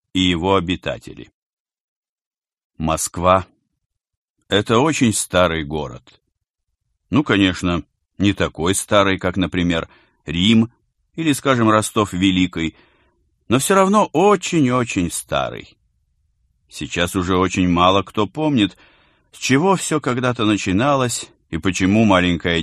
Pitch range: 85-110 Hz